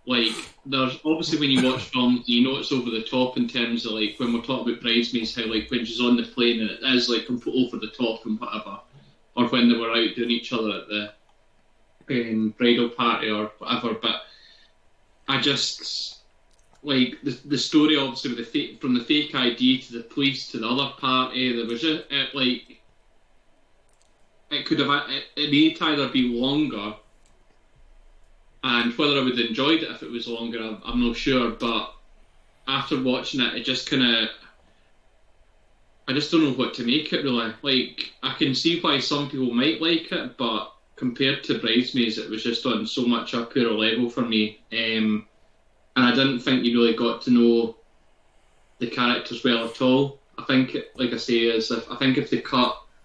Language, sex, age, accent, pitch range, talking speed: English, male, 20-39, British, 115-130 Hz, 195 wpm